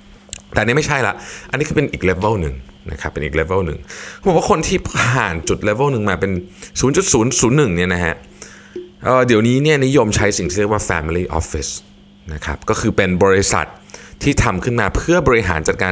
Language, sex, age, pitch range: Thai, male, 20-39, 85-110 Hz